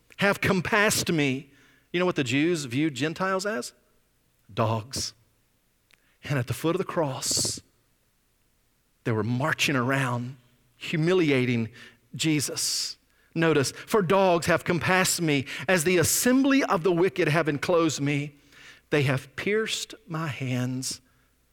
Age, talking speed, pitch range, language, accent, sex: 40-59, 125 wpm, 120-175 Hz, English, American, male